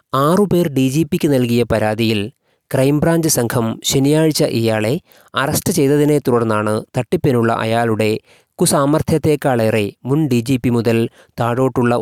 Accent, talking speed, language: native, 110 wpm, Malayalam